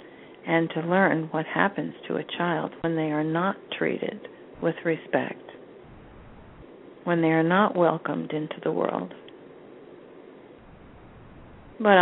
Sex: female